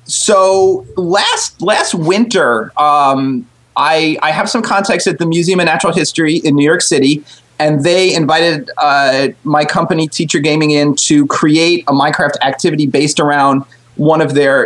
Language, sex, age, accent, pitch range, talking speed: English, male, 30-49, American, 140-175 Hz, 160 wpm